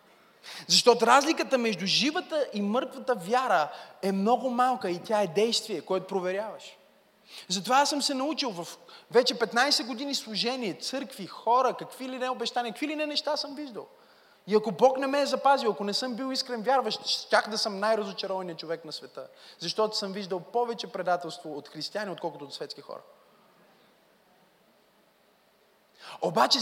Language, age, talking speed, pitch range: Bulgarian, 20-39, 160 wpm, 195-270 Hz